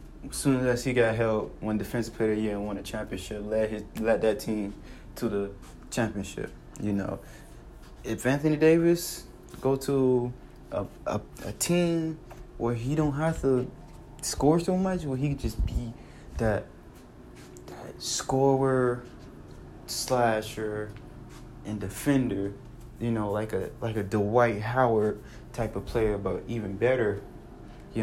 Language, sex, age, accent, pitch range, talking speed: English, male, 20-39, American, 105-135 Hz, 140 wpm